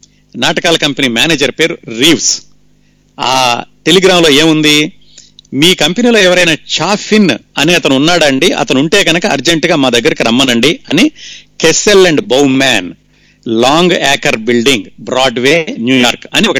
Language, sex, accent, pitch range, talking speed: Telugu, male, native, 135-185 Hz, 130 wpm